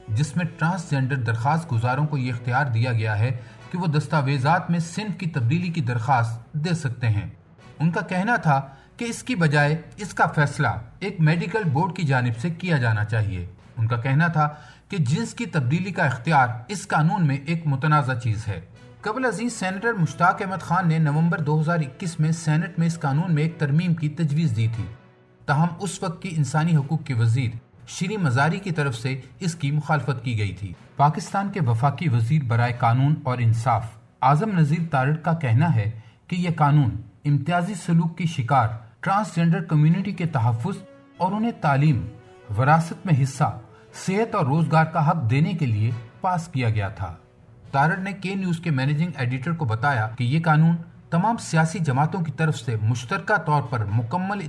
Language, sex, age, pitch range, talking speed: Urdu, male, 40-59, 125-170 Hz, 185 wpm